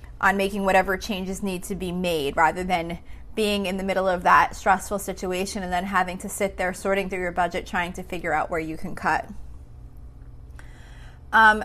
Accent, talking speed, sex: American, 190 wpm, female